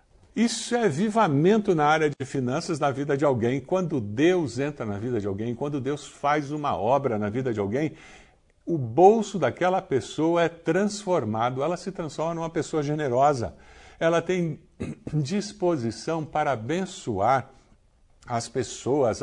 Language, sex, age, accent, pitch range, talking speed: Portuguese, male, 60-79, Brazilian, 105-175 Hz, 145 wpm